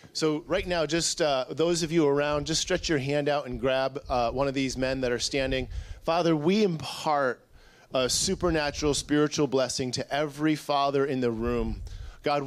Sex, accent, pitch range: male, American, 135-170 Hz